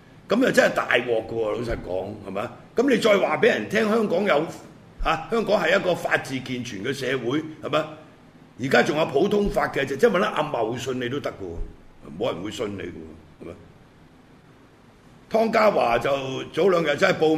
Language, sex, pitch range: Chinese, male, 130-185 Hz